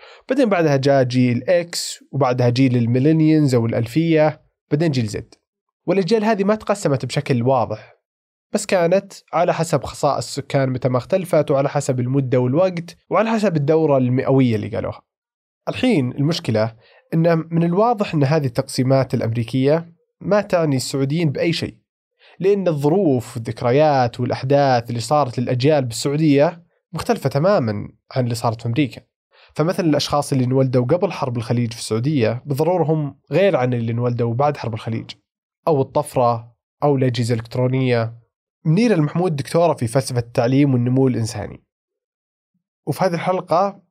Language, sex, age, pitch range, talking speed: Arabic, male, 20-39, 125-165 Hz, 135 wpm